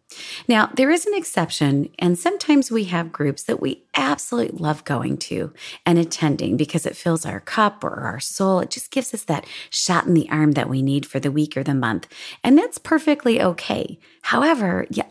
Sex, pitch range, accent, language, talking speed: female, 155-255 Hz, American, English, 200 wpm